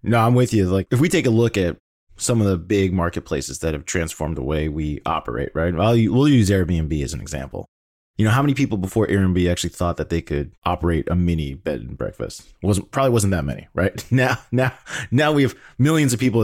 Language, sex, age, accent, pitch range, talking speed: English, male, 30-49, American, 90-115 Hz, 235 wpm